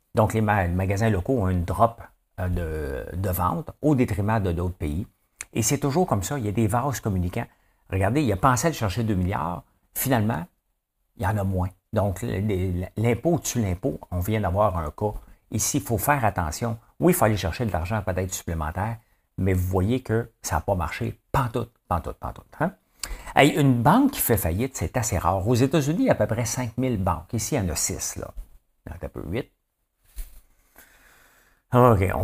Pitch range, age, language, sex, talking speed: 90-120 Hz, 50-69, English, male, 200 wpm